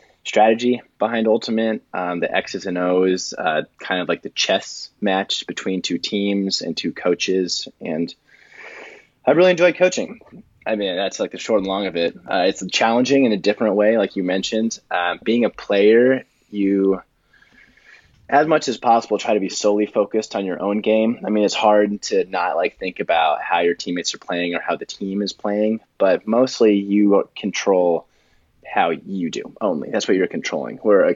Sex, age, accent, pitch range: male, 20-39, American, 95-115 Hz